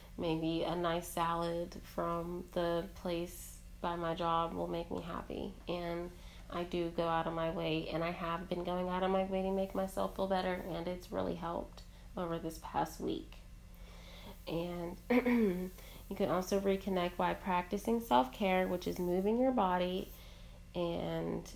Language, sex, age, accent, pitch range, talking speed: English, female, 30-49, American, 165-185 Hz, 160 wpm